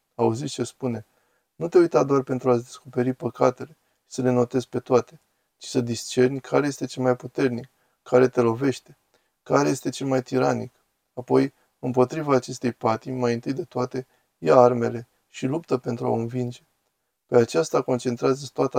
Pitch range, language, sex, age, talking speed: 120-140 Hz, Romanian, male, 20-39, 165 wpm